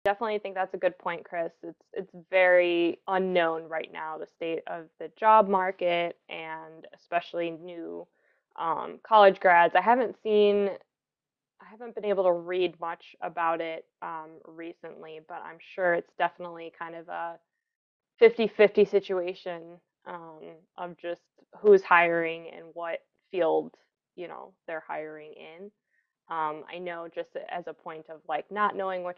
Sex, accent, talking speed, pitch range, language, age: female, American, 150 wpm, 165-185 Hz, English, 20-39